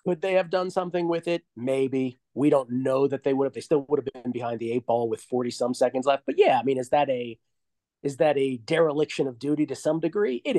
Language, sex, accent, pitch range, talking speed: English, male, American, 125-160 Hz, 260 wpm